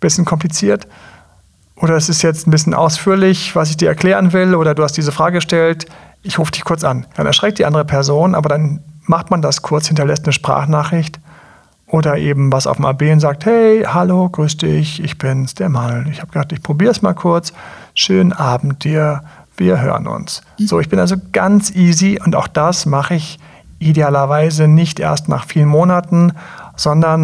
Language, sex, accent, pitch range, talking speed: German, male, German, 145-175 Hz, 190 wpm